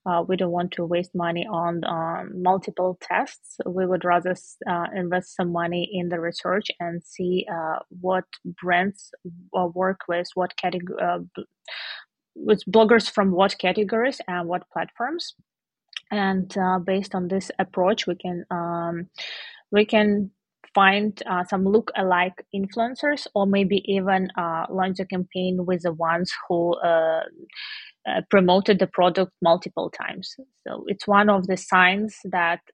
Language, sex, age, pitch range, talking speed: English, female, 20-39, 175-200 Hz, 150 wpm